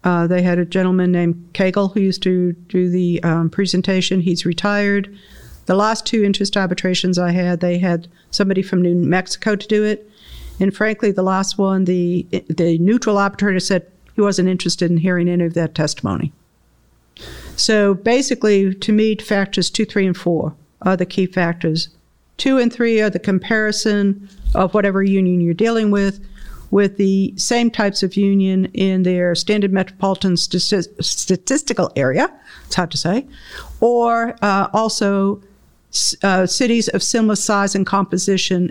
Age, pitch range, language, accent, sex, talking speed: 50-69, 180-205 Hz, English, American, female, 160 wpm